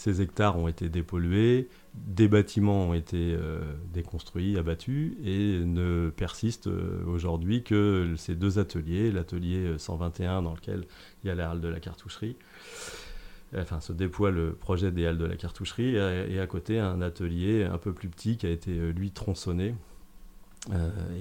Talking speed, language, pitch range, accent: 165 wpm, French, 85-100 Hz, French